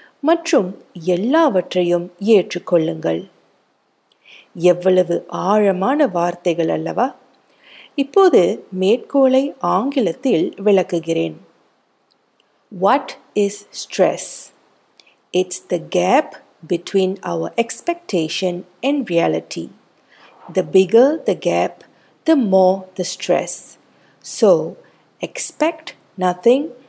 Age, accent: 50-69, native